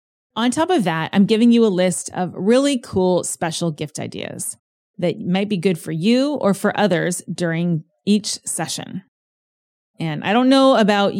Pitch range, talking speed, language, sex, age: 165-200 Hz, 170 wpm, English, female, 30-49